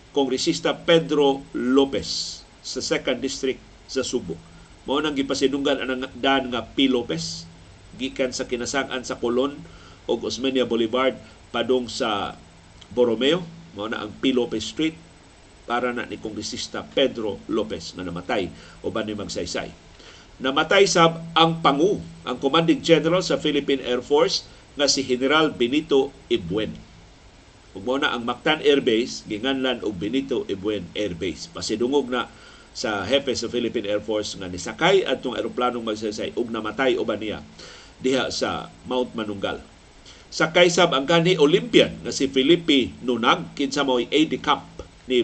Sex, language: male, Filipino